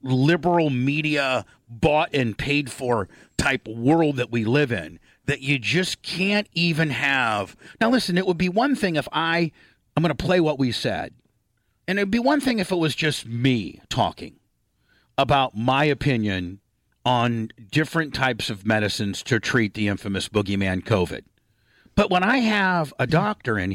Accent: American